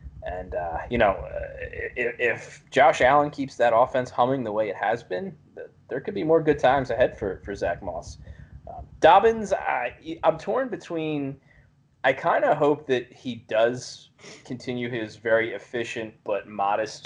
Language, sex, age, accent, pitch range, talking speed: English, male, 20-39, American, 110-140 Hz, 160 wpm